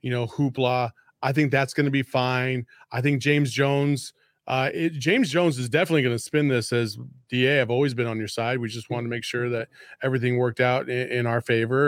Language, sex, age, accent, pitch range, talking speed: English, male, 30-49, American, 125-170 Hz, 225 wpm